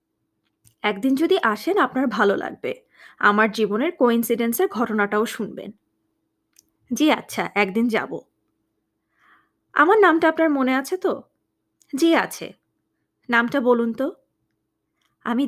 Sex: female